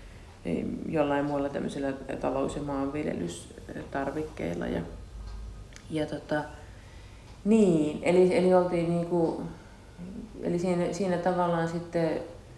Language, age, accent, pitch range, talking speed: Finnish, 30-49, native, 115-155 Hz, 90 wpm